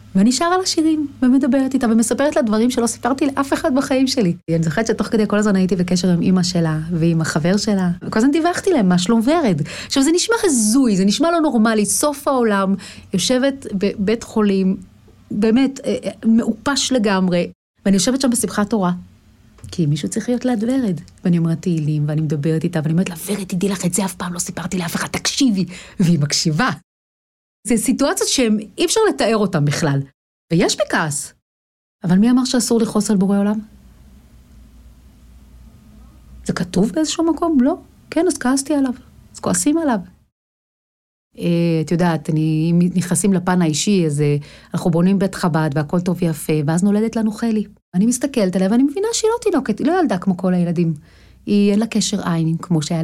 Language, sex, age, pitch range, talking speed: Hebrew, female, 30-49, 170-250 Hz, 175 wpm